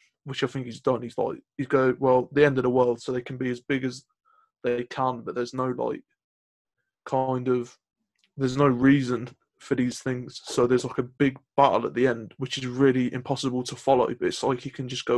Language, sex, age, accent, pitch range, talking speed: English, male, 20-39, British, 125-140 Hz, 230 wpm